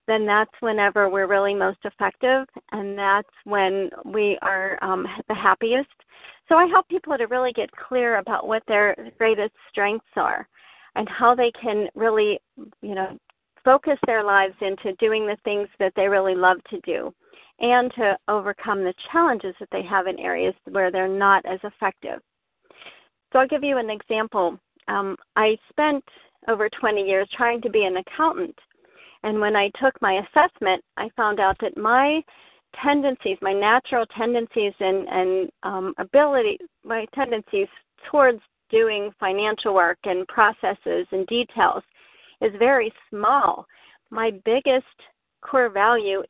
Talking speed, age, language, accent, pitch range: 150 wpm, 40-59, English, American, 200-255 Hz